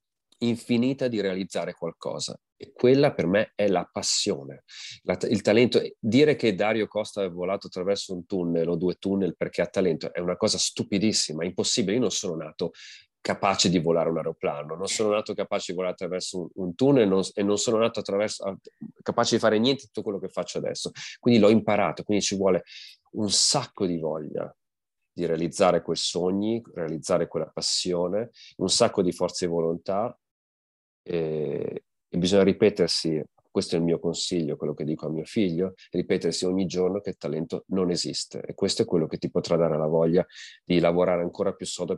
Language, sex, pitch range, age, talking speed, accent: Italian, male, 85-110 Hz, 30-49, 185 wpm, native